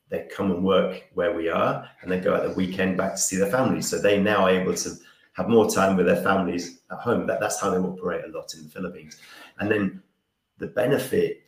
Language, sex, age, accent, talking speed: English, male, 30-49, British, 240 wpm